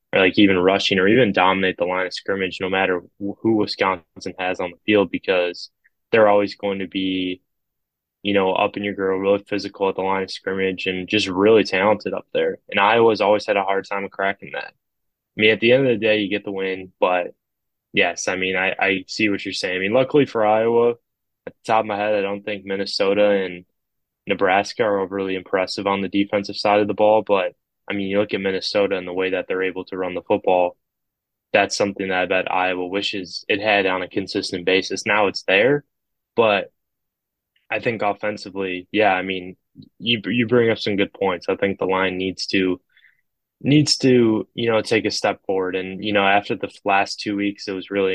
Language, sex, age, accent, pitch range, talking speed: English, male, 10-29, American, 95-105 Hz, 215 wpm